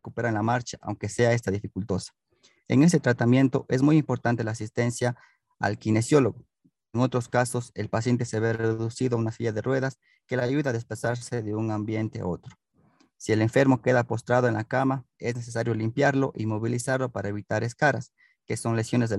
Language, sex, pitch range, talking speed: Hungarian, male, 110-130 Hz, 190 wpm